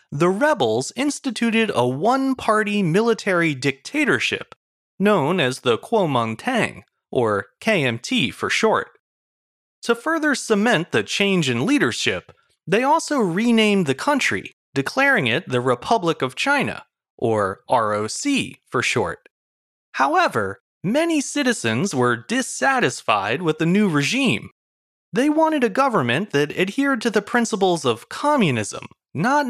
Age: 30-49